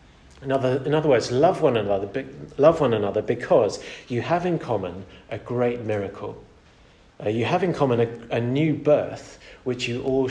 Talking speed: 185 wpm